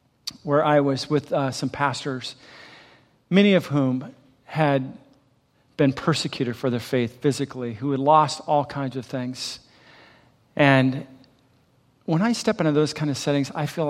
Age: 40-59